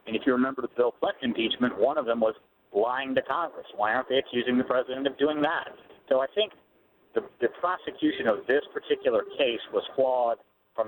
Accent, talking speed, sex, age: American, 205 wpm, male, 50-69